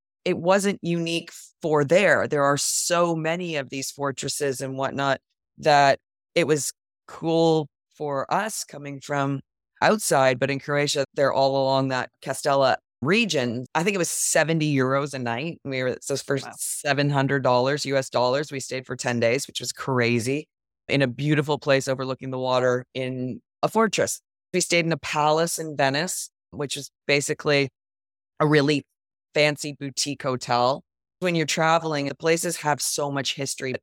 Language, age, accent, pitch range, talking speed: English, 20-39, American, 135-160 Hz, 160 wpm